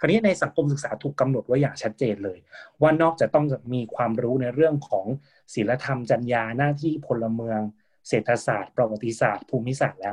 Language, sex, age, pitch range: Thai, male, 20-39, 120-155 Hz